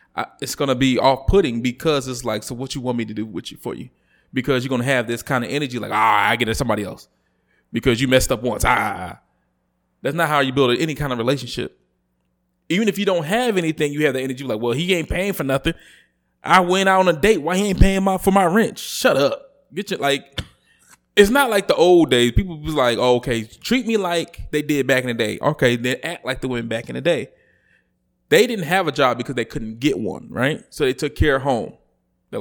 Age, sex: 20-39, male